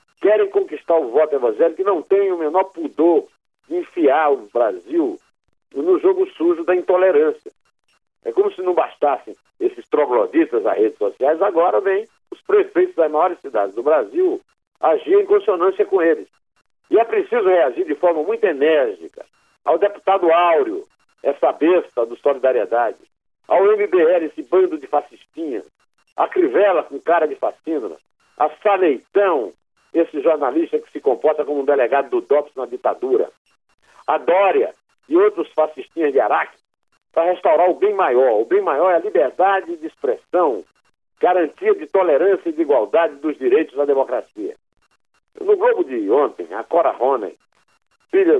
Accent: Brazilian